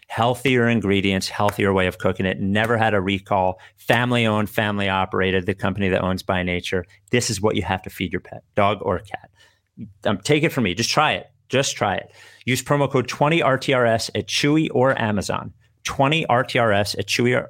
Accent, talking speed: American, 180 wpm